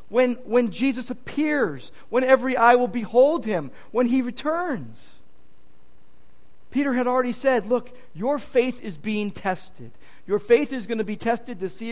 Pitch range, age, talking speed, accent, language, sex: 175-260 Hz, 50-69, 160 wpm, American, English, male